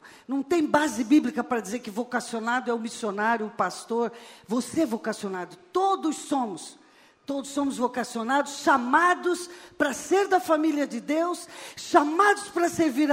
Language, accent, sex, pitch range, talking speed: Portuguese, Brazilian, female, 250-335 Hz, 140 wpm